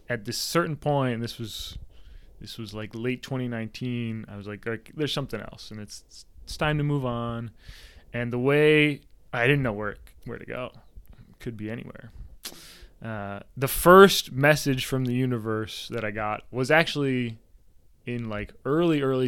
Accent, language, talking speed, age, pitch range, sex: American, English, 170 wpm, 20-39, 105-130 Hz, male